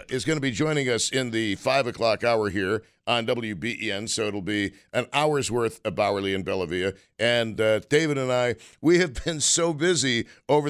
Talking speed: 195 wpm